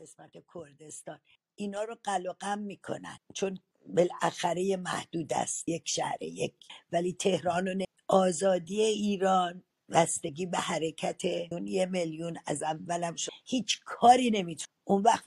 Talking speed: 125 wpm